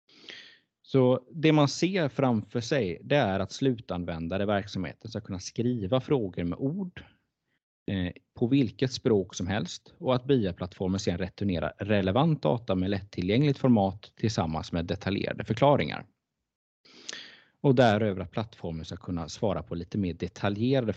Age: 30-49